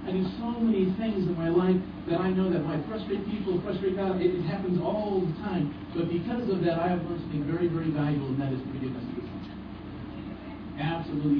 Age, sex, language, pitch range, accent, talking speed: 50-69, male, English, 160-220 Hz, American, 215 wpm